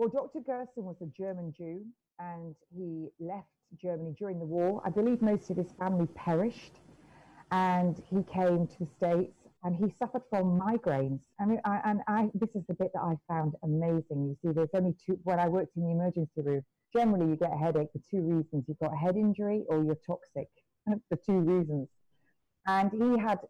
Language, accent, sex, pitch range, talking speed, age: English, British, female, 160-205 Hz, 200 wpm, 40-59